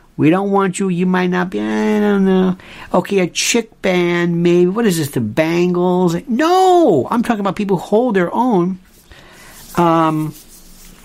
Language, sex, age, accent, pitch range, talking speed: English, male, 50-69, American, 120-180 Hz, 170 wpm